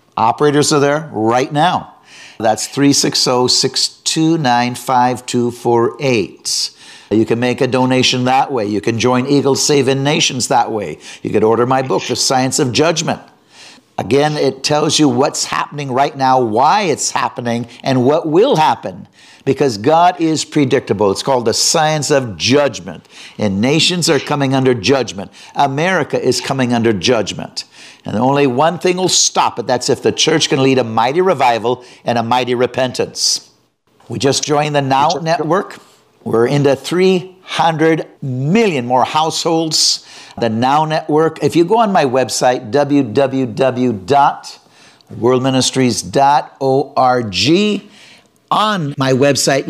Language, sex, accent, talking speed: English, male, American, 145 wpm